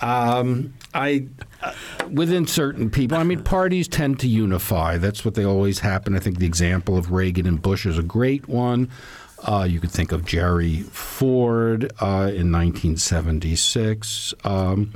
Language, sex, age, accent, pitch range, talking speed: English, male, 60-79, American, 90-115 Hz, 155 wpm